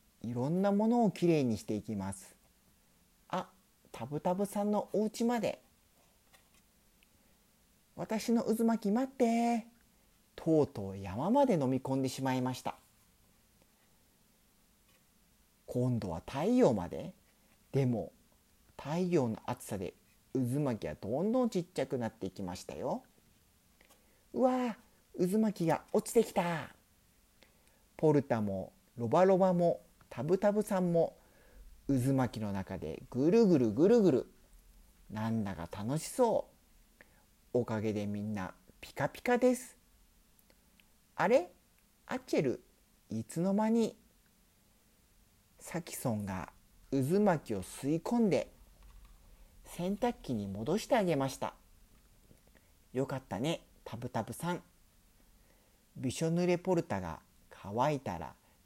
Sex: male